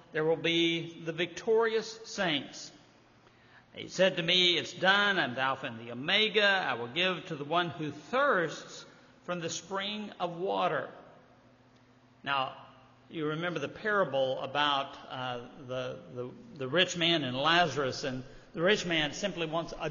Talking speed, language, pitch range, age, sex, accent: 155 wpm, English, 150-190 Hz, 50-69, male, American